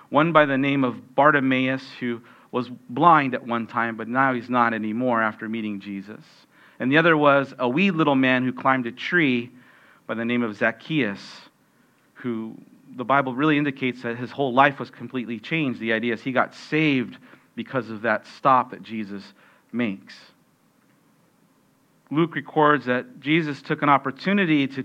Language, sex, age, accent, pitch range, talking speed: English, male, 40-59, American, 120-145 Hz, 170 wpm